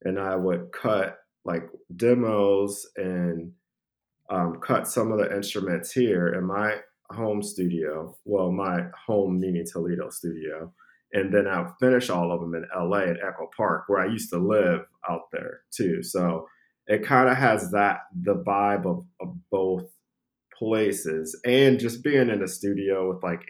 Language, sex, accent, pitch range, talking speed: English, male, American, 90-110 Hz, 165 wpm